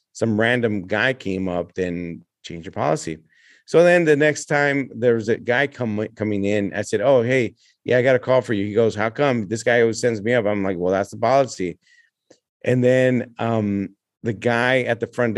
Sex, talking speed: male, 215 wpm